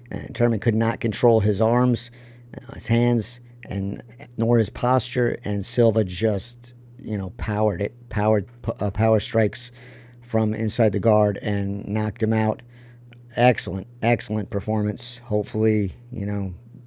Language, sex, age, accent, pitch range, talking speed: English, male, 50-69, American, 105-120 Hz, 135 wpm